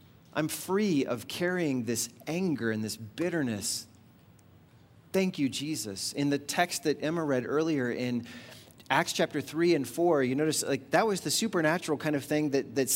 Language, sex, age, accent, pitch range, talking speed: English, male, 30-49, American, 120-165 Hz, 170 wpm